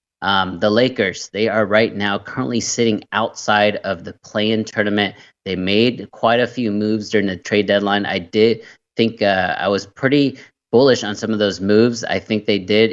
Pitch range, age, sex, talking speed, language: 100-110 Hz, 20-39, male, 190 wpm, English